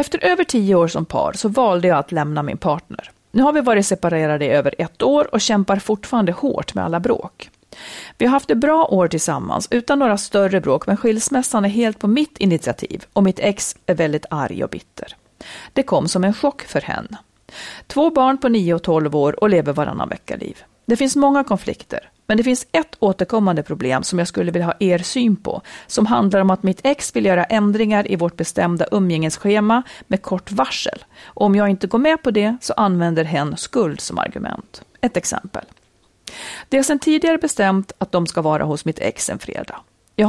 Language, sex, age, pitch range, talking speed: Swedish, female, 40-59, 175-250 Hz, 205 wpm